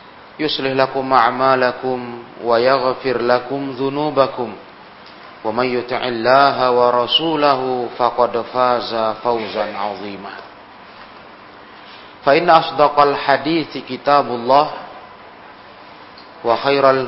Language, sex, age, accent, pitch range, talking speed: Indonesian, male, 40-59, native, 120-145 Hz, 80 wpm